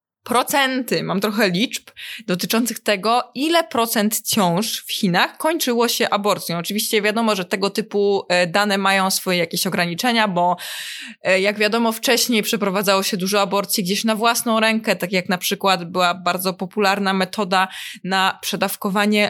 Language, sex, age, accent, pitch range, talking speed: Polish, female, 20-39, native, 195-235 Hz, 145 wpm